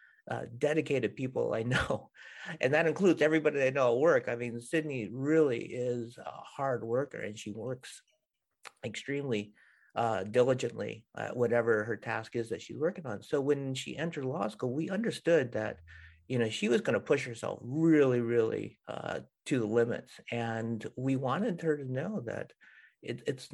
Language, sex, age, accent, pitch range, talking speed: English, male, 50-69, American, 115-140 Hz, 170 wpm